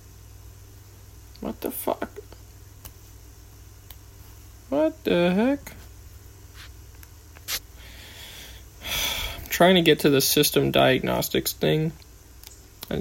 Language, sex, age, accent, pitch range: English, male, 20-39, American, 90-135 Hz